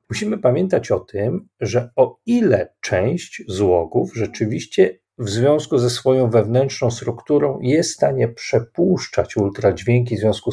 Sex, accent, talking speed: male, native, 130 wpm